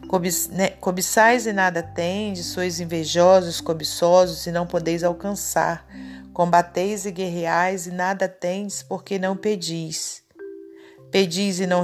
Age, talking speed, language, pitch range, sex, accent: 40-59, 125 wpm, Portuguese, 170-205 Hz, female, Brazilian